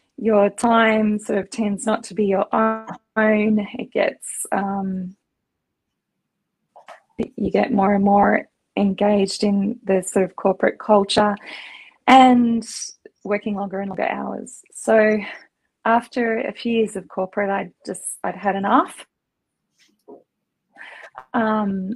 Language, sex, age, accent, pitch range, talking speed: English, female, 20-39, Australian, 195-225 Hz, 120 wpm